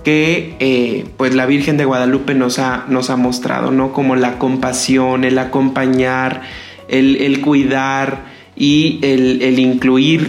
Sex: male